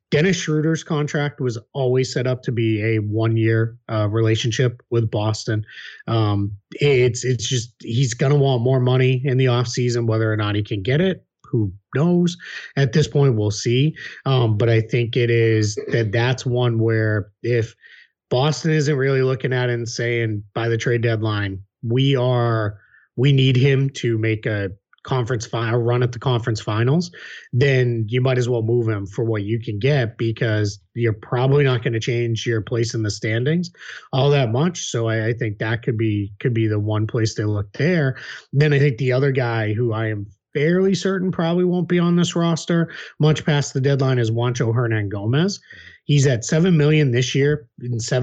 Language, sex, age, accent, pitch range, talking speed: English, male, 30-49, American, 115-140 Hz, 190 wpm